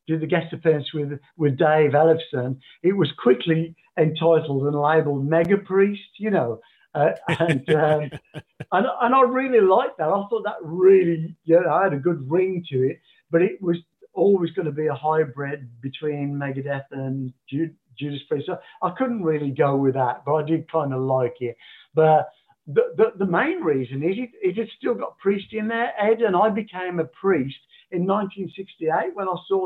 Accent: British